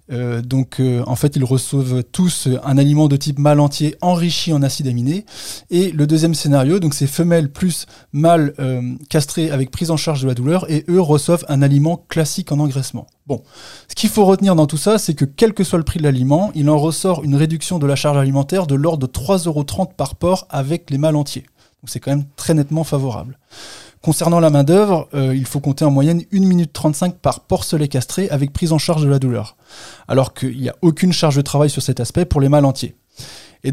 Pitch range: 135-170 Hz